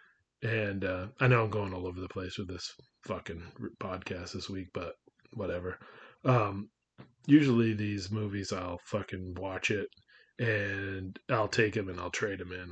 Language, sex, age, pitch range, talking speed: English, male, 30-49, 95-120 Hz, 165 wpm